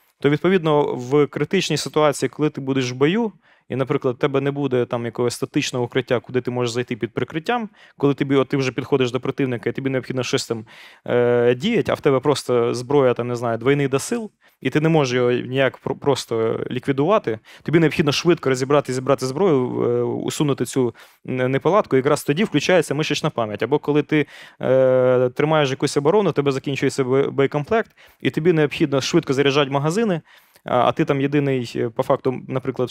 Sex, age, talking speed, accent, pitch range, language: male, 20-39, 180 wpm, native, 130-155 Hz, Russian